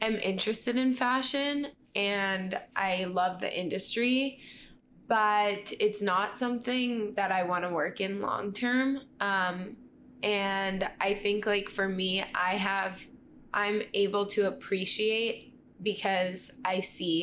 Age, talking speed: 10-29, 120 wpm